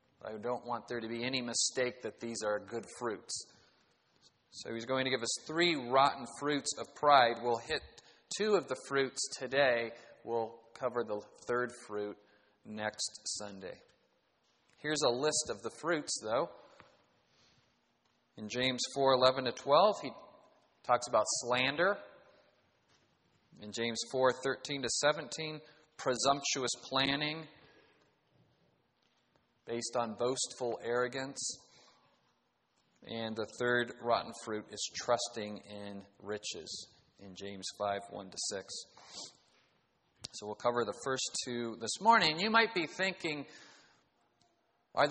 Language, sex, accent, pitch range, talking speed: English, male, American, 115-140 Hz, 125 wpm